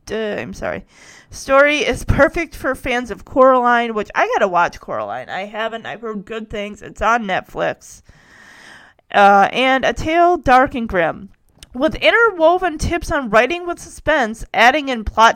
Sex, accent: female, American